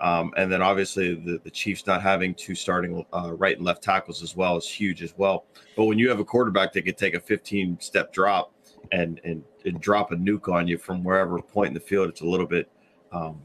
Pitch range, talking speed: 90-110 Hz, 235 wpm